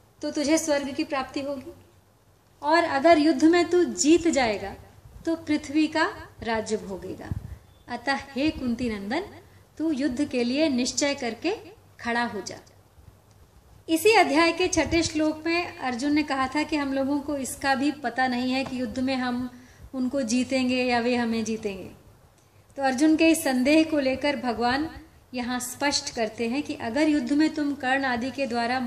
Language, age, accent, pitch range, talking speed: Hindi, 30-49, native, 220-300 Hz, 170 wpm